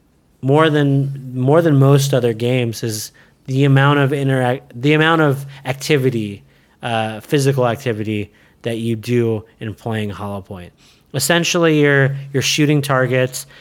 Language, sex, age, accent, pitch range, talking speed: English, male, 30-49, American, 120-145 Hz, 135 wpm